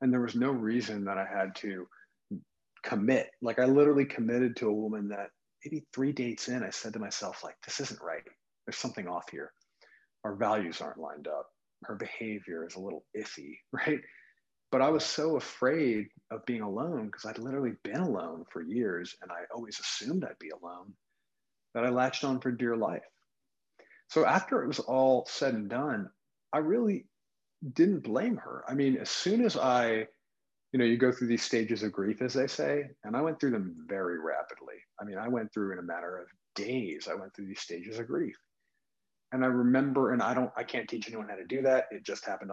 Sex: male